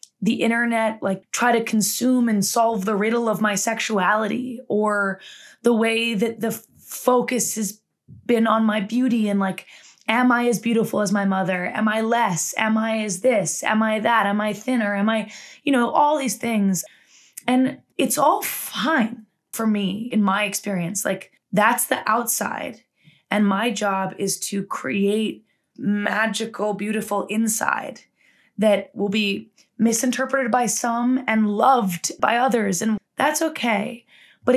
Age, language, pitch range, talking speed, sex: 20-39, English, 205-235 Hz, 155 wpm, female